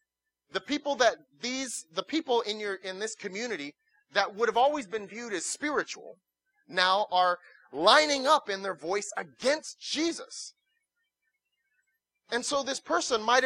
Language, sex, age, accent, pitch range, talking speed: English, male, 30-49, American, 195-310 Hz, 145 wpm